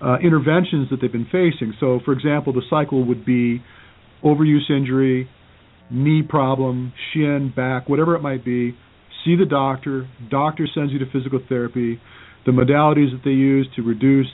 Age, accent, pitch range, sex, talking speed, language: 50-69, American, 125-155 Hz, male, 165 wpm, English